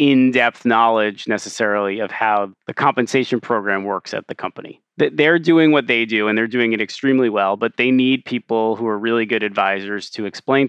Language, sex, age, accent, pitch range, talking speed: English, male, 30-49, American, 105-125 Hz, 190 wpm